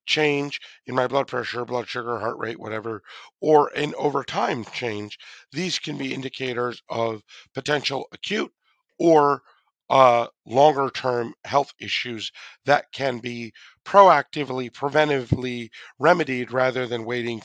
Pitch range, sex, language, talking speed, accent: 120-145 Hz, male, English, 120 wpm, American